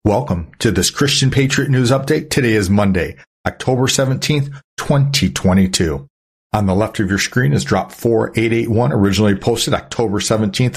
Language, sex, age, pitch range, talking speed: English, male, 60-79, 95-130 Hz, 145 wpm